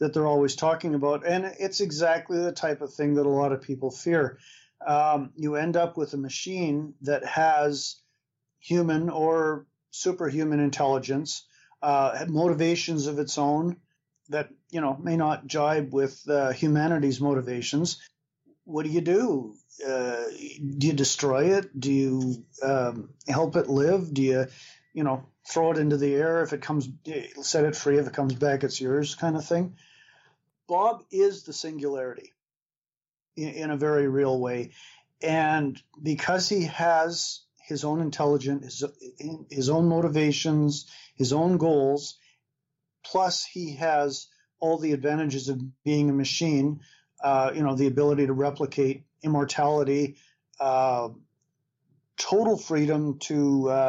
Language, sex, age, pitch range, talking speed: English, male, 40-59, 140-160 Hz, 145 wpm